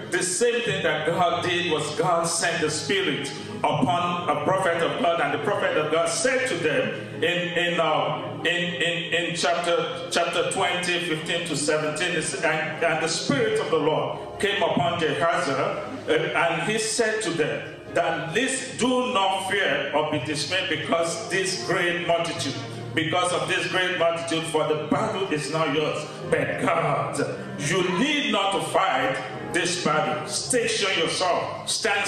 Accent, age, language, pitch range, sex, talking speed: Nigerian, 40-59, English, 155-180 Hz, male, 165 wpm